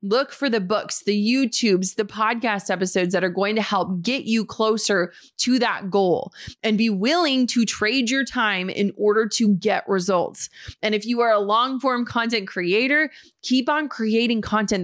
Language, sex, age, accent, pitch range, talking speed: English, female, 30-49, American, 185-225 Hz, 180 wpm